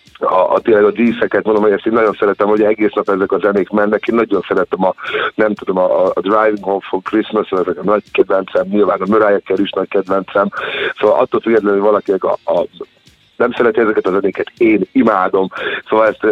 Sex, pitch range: male, 95-120 Hz